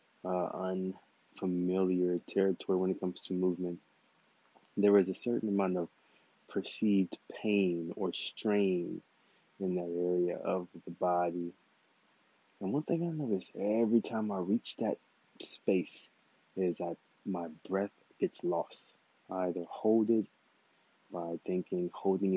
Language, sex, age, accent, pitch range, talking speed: English, male, 20-39, American, 90-105 Hz, 130 wpm